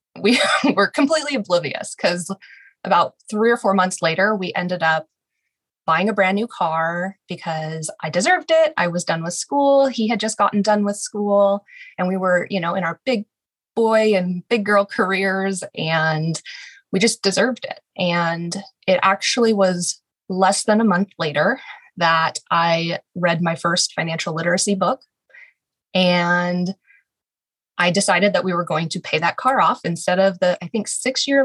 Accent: American